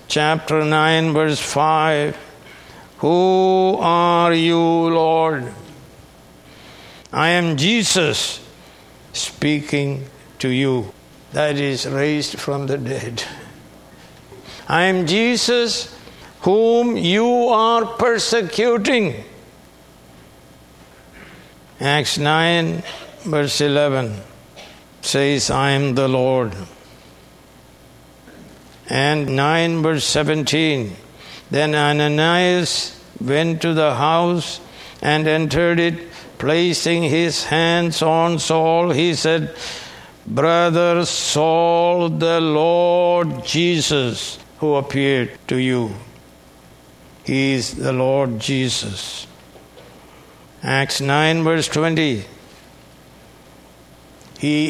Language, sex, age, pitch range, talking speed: English, male, 60-79, 115-165 Hz, 80 wpm